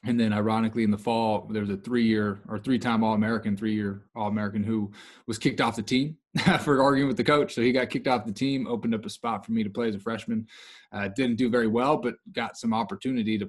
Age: 20-39